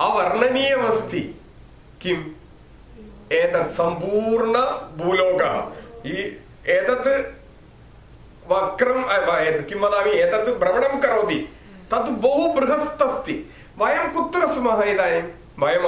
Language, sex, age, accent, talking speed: English, male, 30-49, Indian, 105 wpm